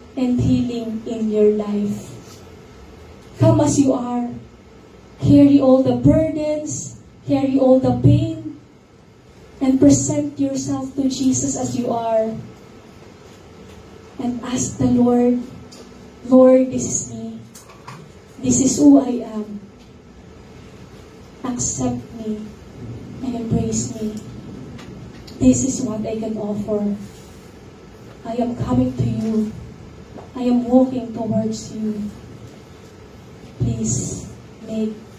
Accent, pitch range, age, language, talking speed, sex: Filipino, 215-280 Hz, 20-39, English, 105 wpm, female